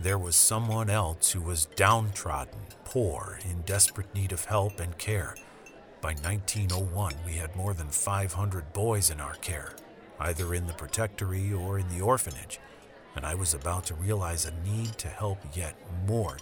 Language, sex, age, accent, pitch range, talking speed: English, male, 50-69, American, 85-100 Hz, 170 wpm